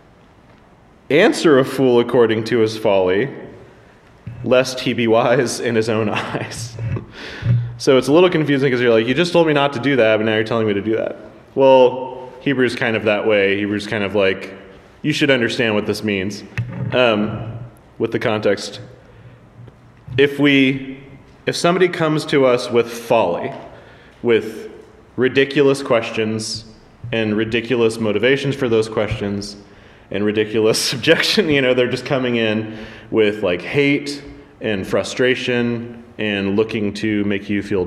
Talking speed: 155 wpm